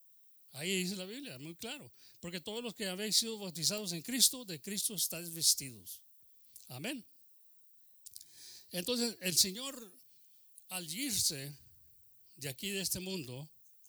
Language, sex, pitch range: English, male, 125-200 Hz